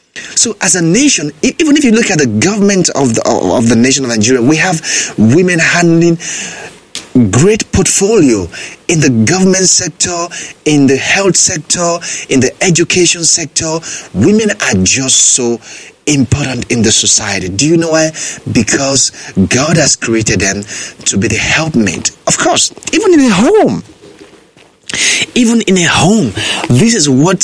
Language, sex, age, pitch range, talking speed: English, male, 30-49, 105-165 Hz, 150 wpm